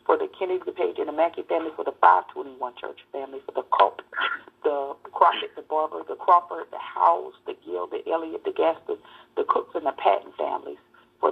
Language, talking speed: English, 200 wpm